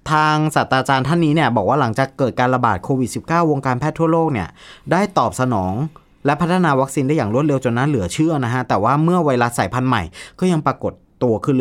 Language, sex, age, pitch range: Thai, male, 20-39, 110-145 Hz